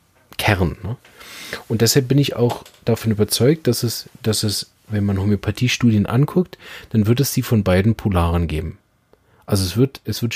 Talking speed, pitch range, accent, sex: 170 wpm, 105-130 Hz, German, male